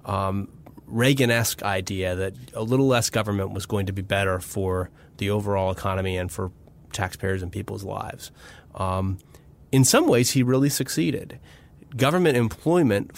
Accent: American